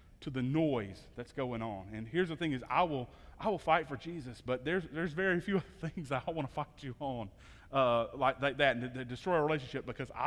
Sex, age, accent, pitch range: male, 30-49, American, 120-155 Hz